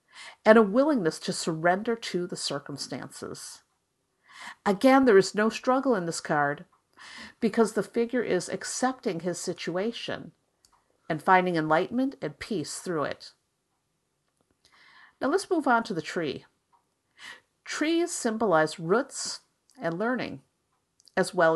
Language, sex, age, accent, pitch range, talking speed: English, female, 50-69, American, 170-250 Hz, 120 wpm